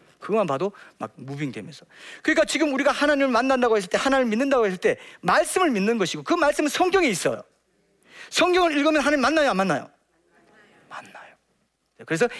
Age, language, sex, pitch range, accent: 40-59, Korean, male, 225-315 Hz, native